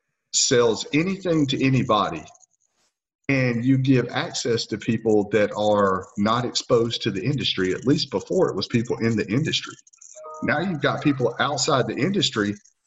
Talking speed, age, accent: 155 wpm, 50-69, American